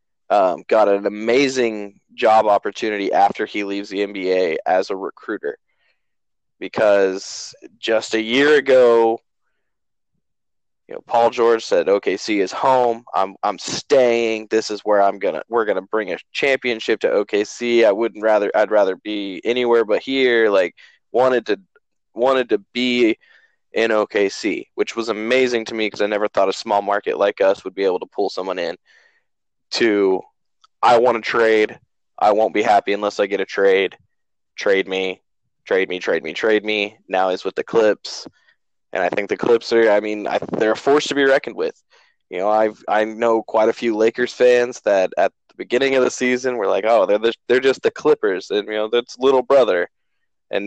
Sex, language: male, English